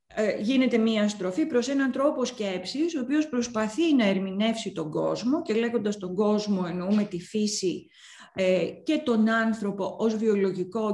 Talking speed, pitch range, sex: 145 wpm, 195-255 Hz, female